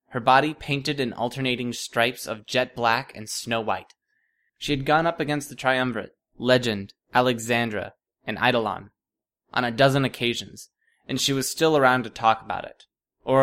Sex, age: male, 20-39